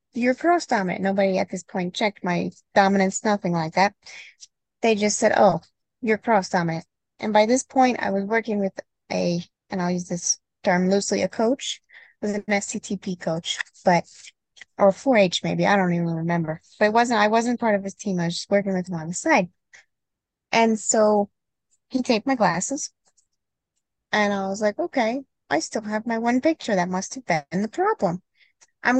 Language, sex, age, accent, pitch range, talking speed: English, female, 20-39, American, 185-235 Hz, 190 wpm